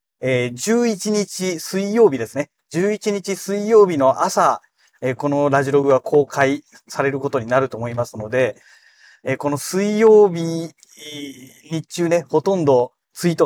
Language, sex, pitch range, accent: Japanese, male, 130-180 Hz, native